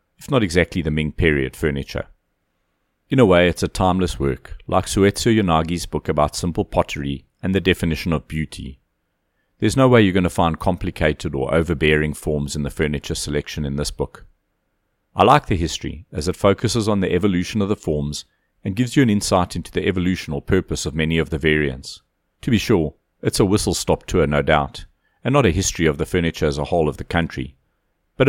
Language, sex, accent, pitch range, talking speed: English, male, South African, 75-95 Hz, 200 wpm